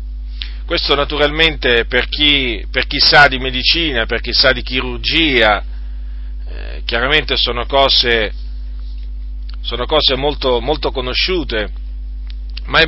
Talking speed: 115 wpm